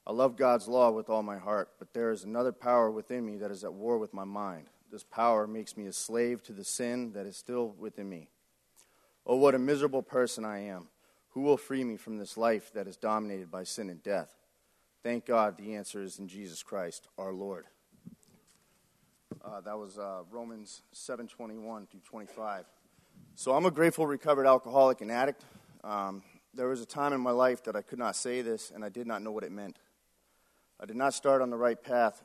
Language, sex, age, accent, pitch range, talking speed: English, male, 30-49, American, 100-125 Hz, 210 wpm